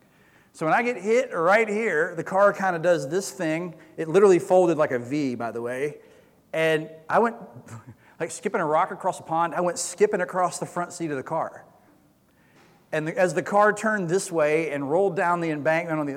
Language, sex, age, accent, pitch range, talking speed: English, male, 40-59, American, 150-200 Hz, 210 wpm